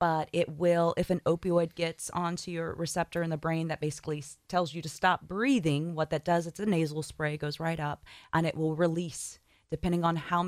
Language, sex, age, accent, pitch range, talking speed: English, female, 30-49, American, 150-175 Hz, 210 wpm